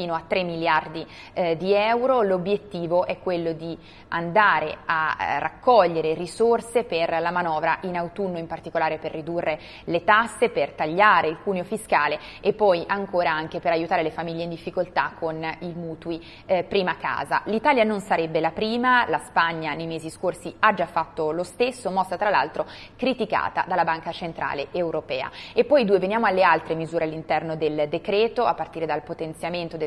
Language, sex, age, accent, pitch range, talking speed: Italian, female, 20-39, native, 165-190 Hz, 170 wpm